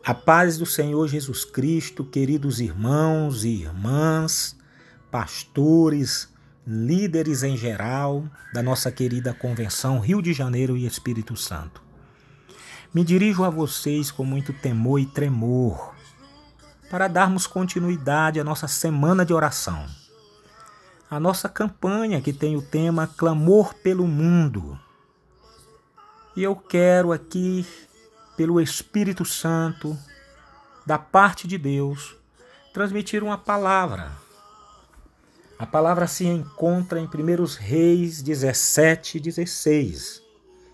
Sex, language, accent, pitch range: male, Portuguese, Brazilian, 140-180 Hz